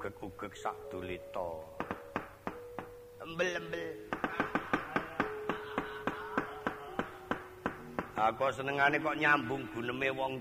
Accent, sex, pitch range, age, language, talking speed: native, male, 115-195 Hz, 50-69, Indonesian, 60 wpm